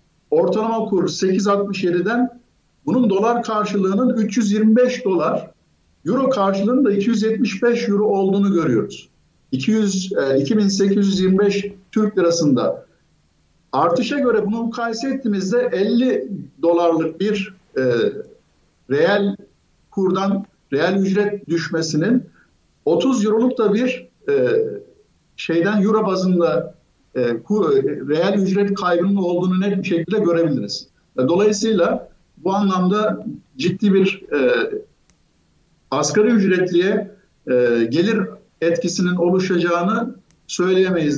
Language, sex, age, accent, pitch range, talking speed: Turkish, male, 50-69, native, 180-220 Hz, 90 wpm